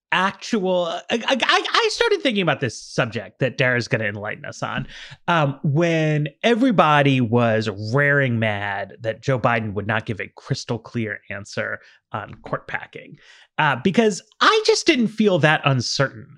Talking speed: 160 wpm